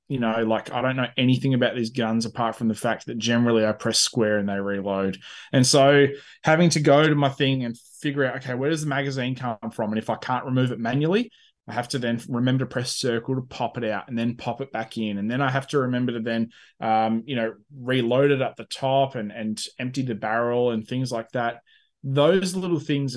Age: 20-39